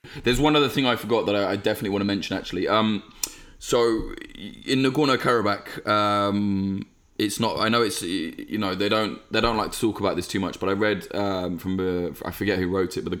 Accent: British